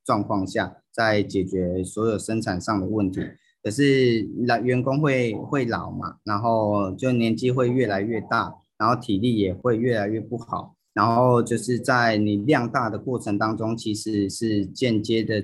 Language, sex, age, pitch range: Chinese, male, 30-49, 105-125 Hz